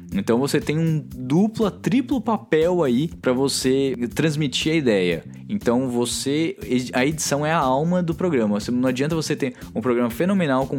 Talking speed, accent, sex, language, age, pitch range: 165 wpm, Brazilian, male, Portuguese, 20-39, 105-155 Hz